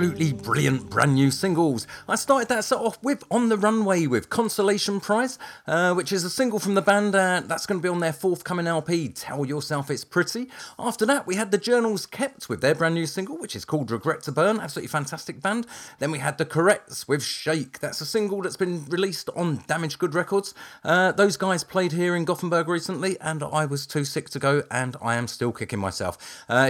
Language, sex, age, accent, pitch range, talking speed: English, male, 40-59, British, 155-205 Hz, 220 wpm